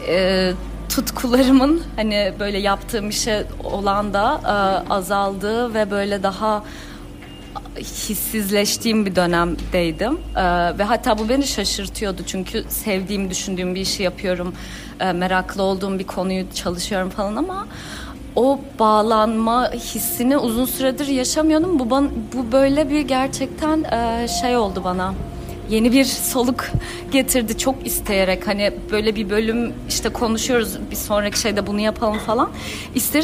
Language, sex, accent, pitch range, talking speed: Turkish, female, native, 200-255 Hz, 125 wpm